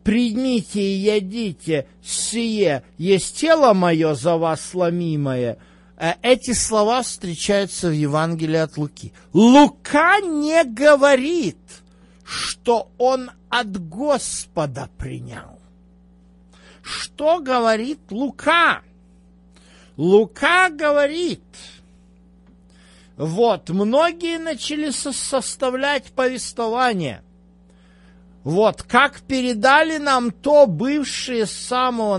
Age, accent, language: 50-69, native, Russian